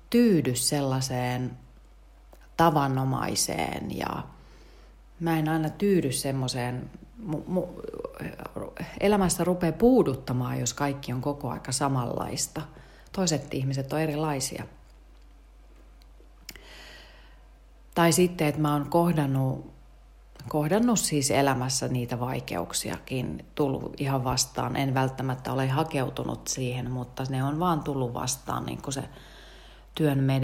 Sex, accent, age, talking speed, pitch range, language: female, native, 30-49, 100 wpm, 125-155 Hz, Finnish